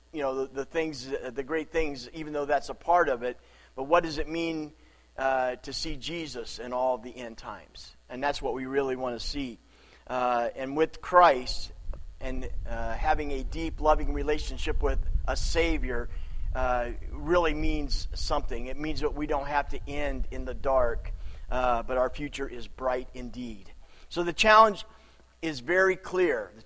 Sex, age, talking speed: male, 40-59, 180 wpm